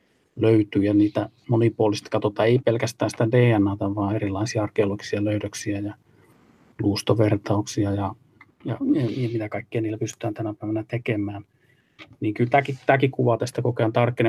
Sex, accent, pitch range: male, native, 105-120 Hz